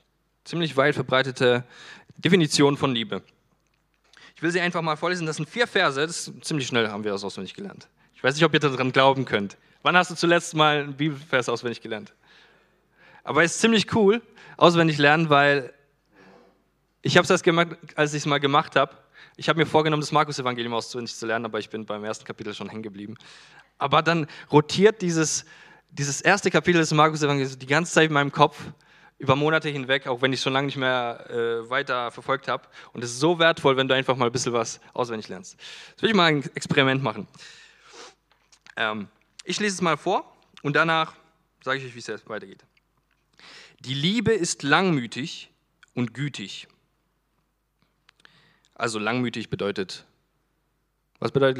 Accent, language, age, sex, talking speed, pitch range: German, German, 20-39, male, 180 wpm, 125-160 Hz